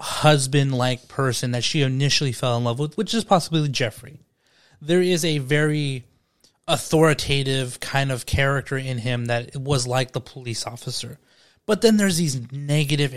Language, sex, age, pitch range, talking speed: English, male, 30-49, 125-150 Hz, 155 wpm